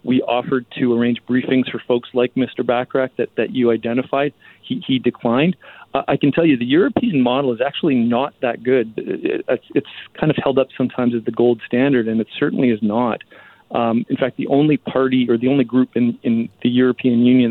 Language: English